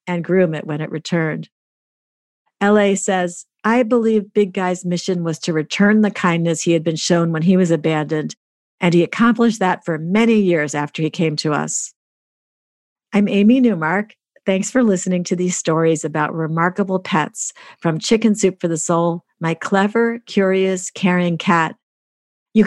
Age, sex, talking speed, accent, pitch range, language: 50-69, female, 165 wpm, American, 170-205 Hz, English